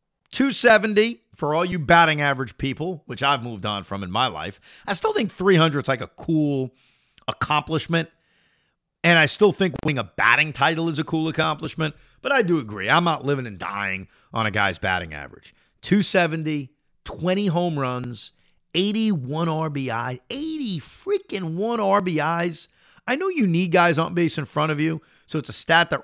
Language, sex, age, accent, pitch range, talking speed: English, male, 40-59, American, 130-180 Hz, 175 wpm